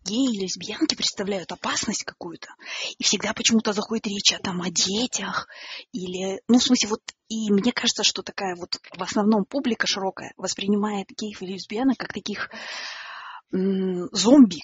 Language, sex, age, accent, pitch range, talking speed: Russian, female, 20-39, native, 190-230 Hz, 160 wpm